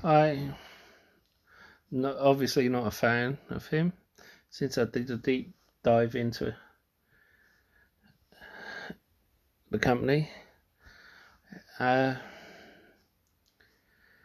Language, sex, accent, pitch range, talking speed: English, male, British, 105-120 Hz, 70 wpm